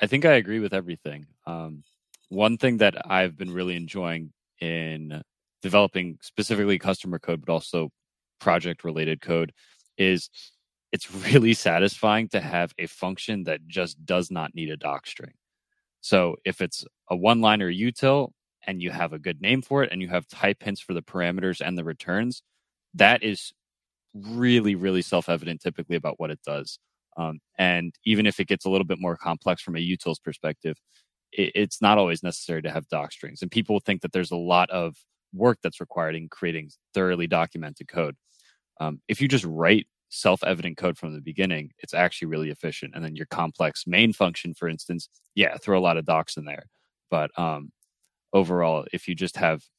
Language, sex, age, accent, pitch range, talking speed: English, male, 20-39, American, 80-100 Hz, 180 wpm